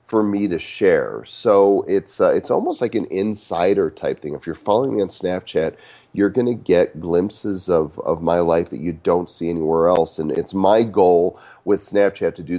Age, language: 40-59, English